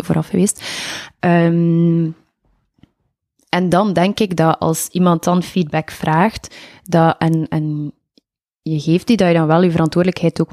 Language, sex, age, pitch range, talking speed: Dutch, female, 20-39, 160-185 Hz, 150 wpm